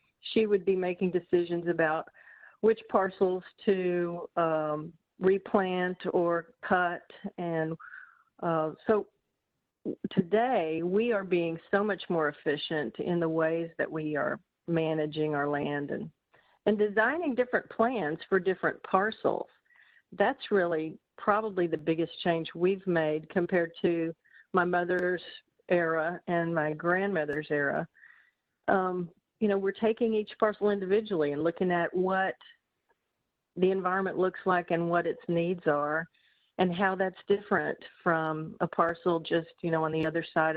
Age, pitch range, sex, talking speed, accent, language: 50-69, 165-200 Hz, female, 140 wpm, American, English